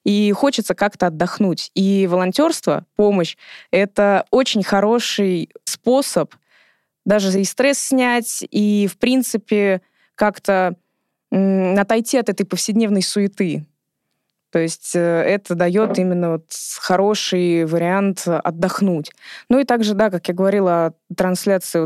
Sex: female